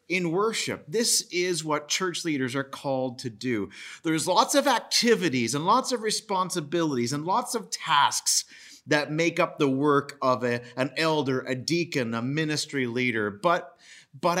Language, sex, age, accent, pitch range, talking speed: English, male, 40-59, American, 135-180 Hz, 160 wpm